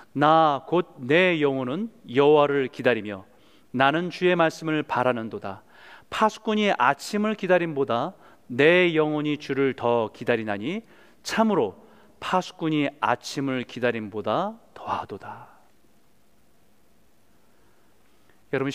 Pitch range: 125-185 Hz